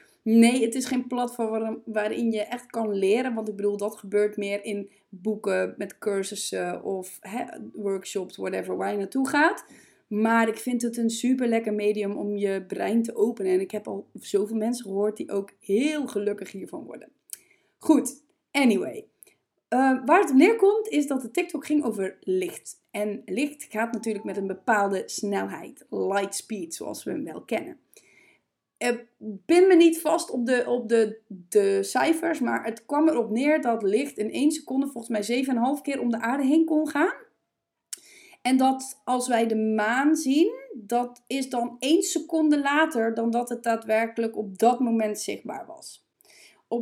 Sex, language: female, Dutch